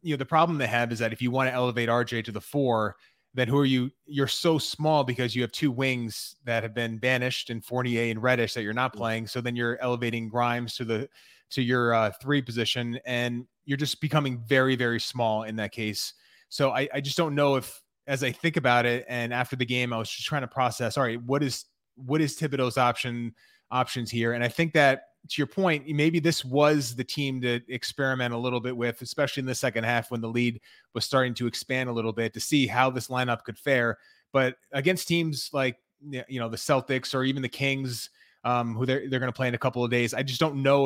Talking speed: 240 wpm